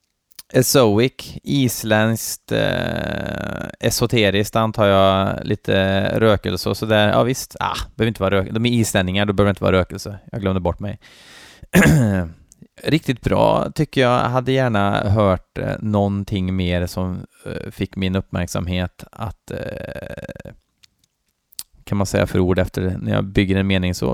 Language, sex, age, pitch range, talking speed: Swedish, male, 20-39, 95-120 Hz, 140 wpm